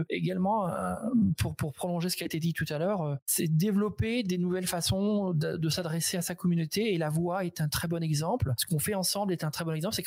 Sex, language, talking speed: male, French, 230 wpm